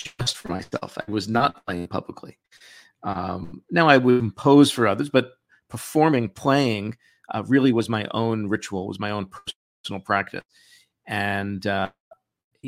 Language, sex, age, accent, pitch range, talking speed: English, male, 50-69, American, 100-125 Hz, 145 wpm